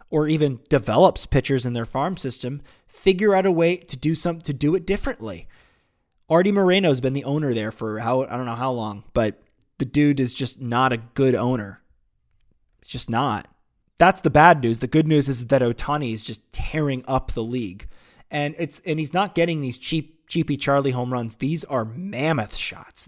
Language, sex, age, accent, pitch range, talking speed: English, male, 20-39, American, 130-165 Hz, 200 wpm